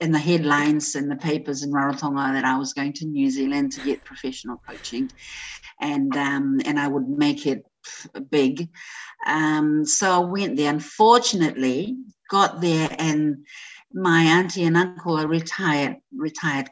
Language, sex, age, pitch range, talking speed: English, female, 50-69, 145-180 Hz, 155 wpm